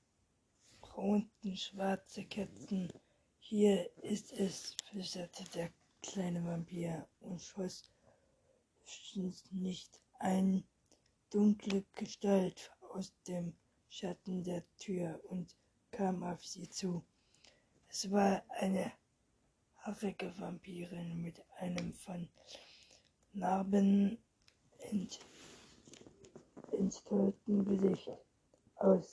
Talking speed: 75 wpm